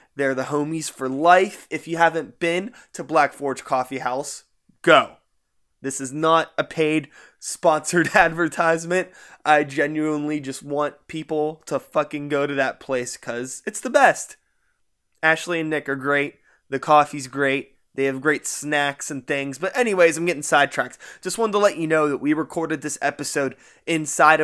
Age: 20-39